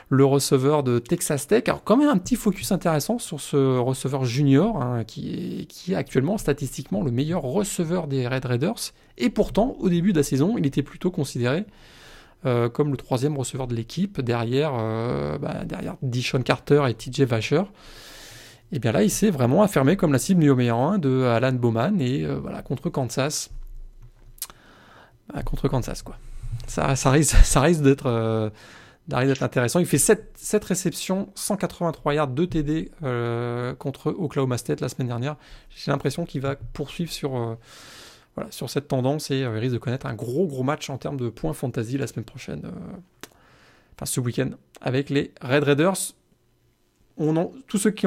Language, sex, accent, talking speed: French, male, French, 175 wpm